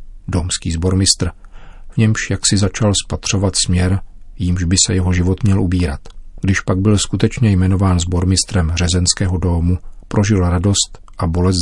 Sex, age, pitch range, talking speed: male, 40-59, 85-95 Hz, 145 wpm